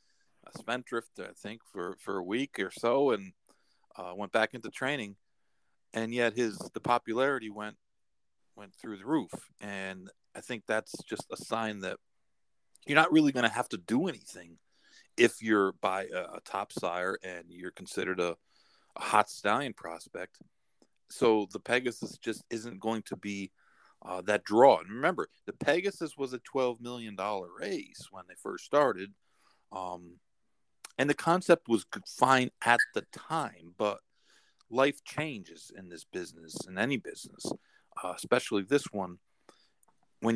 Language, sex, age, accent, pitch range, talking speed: English, male, 40-59, American, 95-120 Hz, 155 wpm